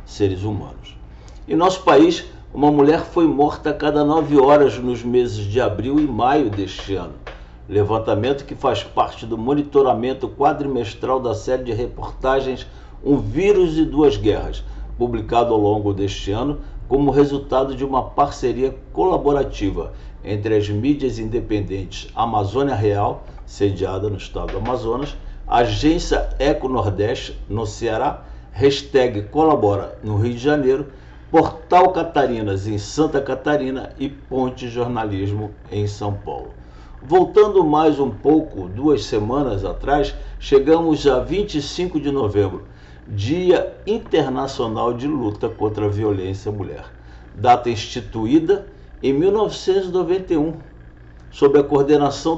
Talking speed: 125 wpm